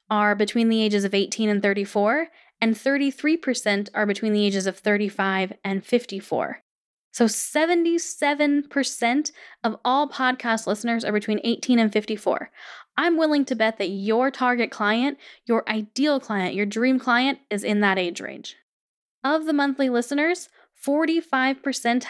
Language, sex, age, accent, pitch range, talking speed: English, female, 10-29, American, 210-270 Hz, 145 wpm